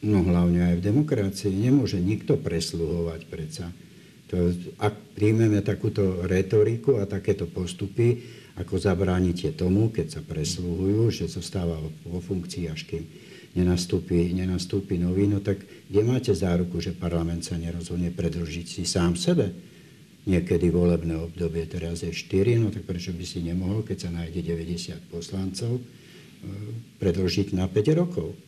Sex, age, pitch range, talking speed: male, 60-79, 85-100 Hz, 135 wpm